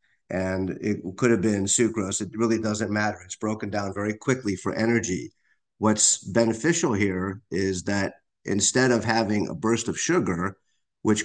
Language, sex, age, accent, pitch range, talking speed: English, male, 50-69, American, 95-110 Hz, 160 wpm